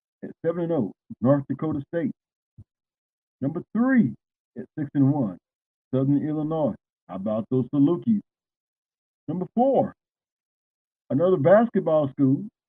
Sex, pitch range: male, 135-195 Hz